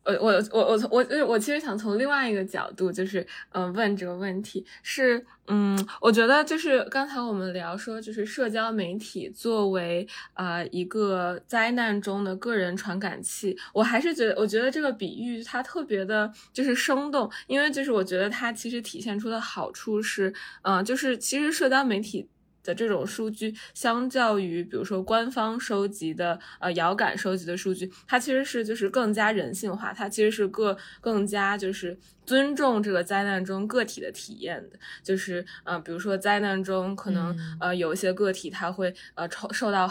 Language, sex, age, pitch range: Chinese, female, 20-39, 185-230 Hz